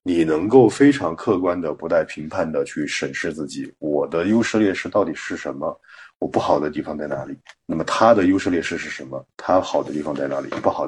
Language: Chinese